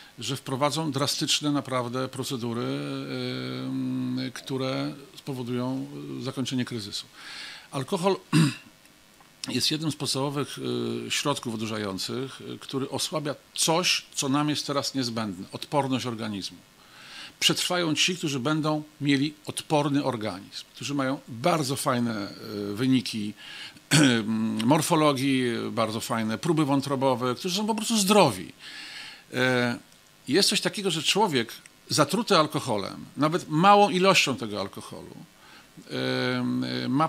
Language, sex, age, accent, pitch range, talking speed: Polish, male, 50-69, native, 120-155 Hz, 100 wpm